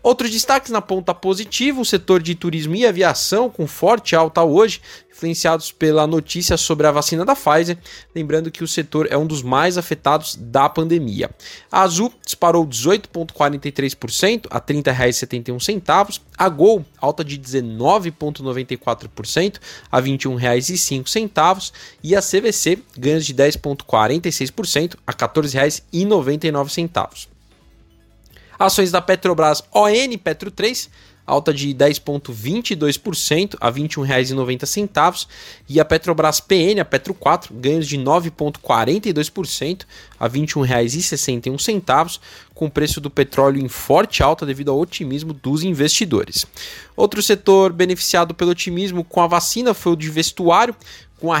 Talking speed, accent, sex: 125 wpm, Brazilian, male